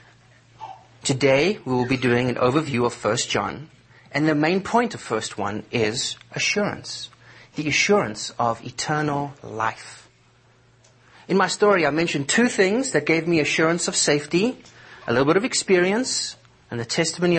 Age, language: 30-49, English